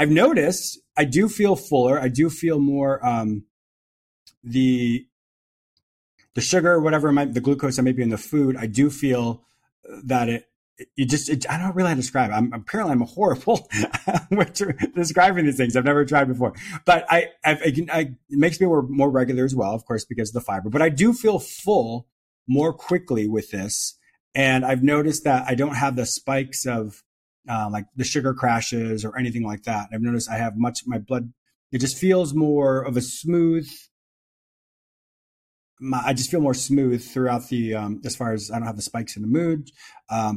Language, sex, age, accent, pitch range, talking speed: English, male, 30-49, American, 115-145 Hz, 200 wpm